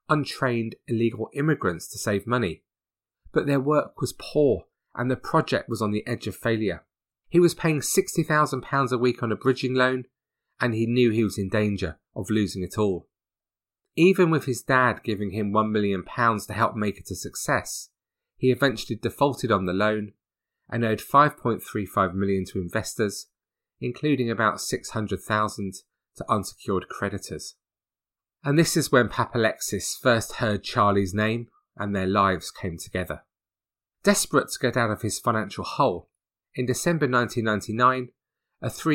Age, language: 30-49, English